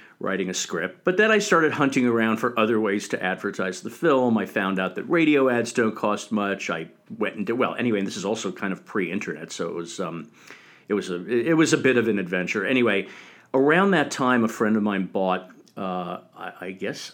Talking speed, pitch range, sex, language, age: 230 wpm, 90-115 Hz, male, English, 50-69